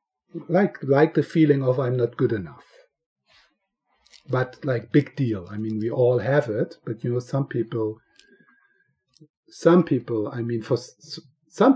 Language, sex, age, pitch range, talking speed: English, male, 50-69, 115-155 Hz, 155 wpm